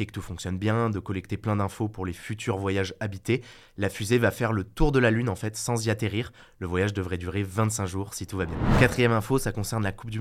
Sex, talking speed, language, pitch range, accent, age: male, 260 wpm, French, 100-120 Hz, French, 20-39